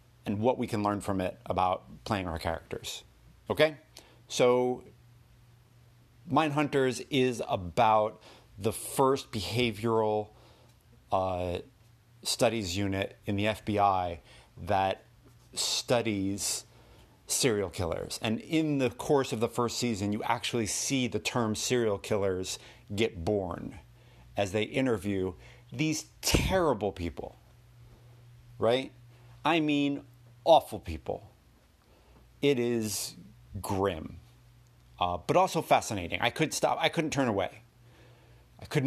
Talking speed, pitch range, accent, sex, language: 115 wpm, 105-130 Hz, American, male, English